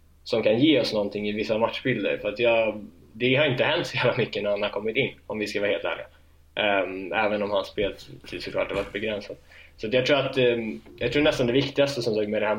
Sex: male